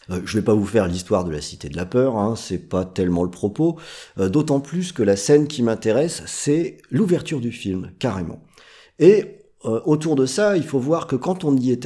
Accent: French